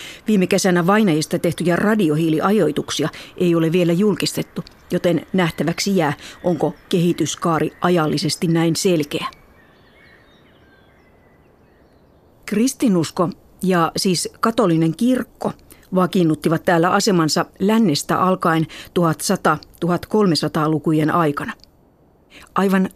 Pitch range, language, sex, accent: 160-195 Hz, Finnish, female, native